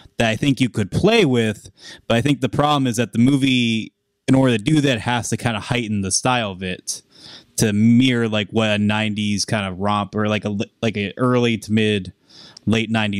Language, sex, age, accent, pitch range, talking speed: English, male, 20-39, American, 105-125 Hz, 220 wpm